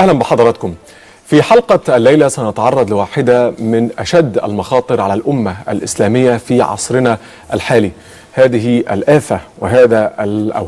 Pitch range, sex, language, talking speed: 115-150 Hz, male, Arabic, 110 wpm